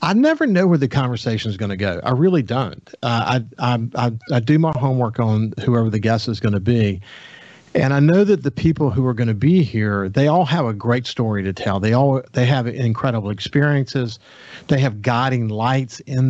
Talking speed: 220 wpm